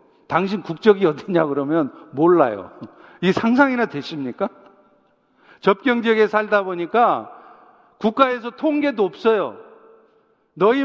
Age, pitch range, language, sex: 50-69, 190-255 Hz, Korean, male